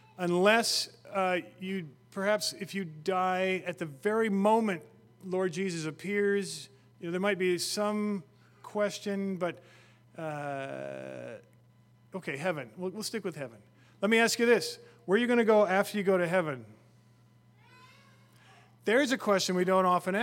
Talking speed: 155 wpm